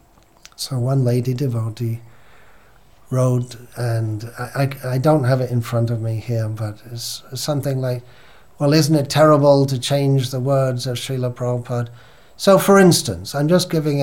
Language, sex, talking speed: English, male, 165 wpm